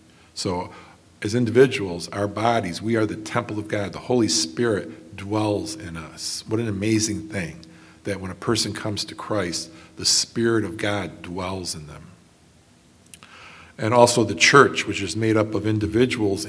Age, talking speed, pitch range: 50-69, 165 wpm, 85-110 Hz